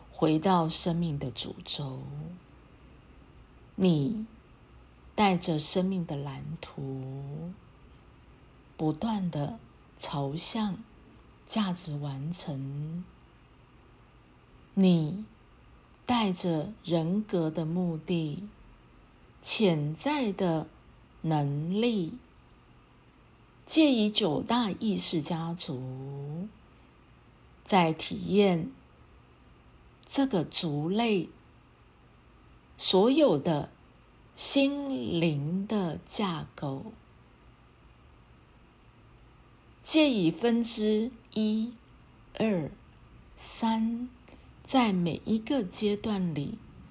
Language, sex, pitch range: Chinese, female, 150-210 Hz